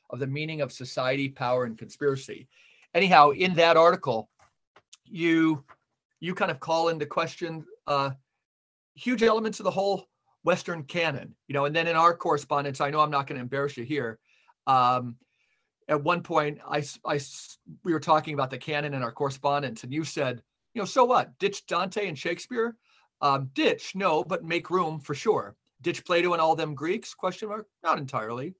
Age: 40-59